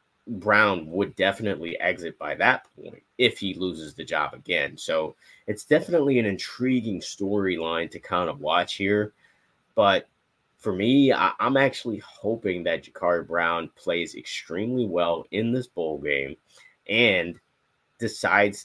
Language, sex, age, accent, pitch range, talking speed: English, male, 30-49, American, 85-110 Hz, 140 wpm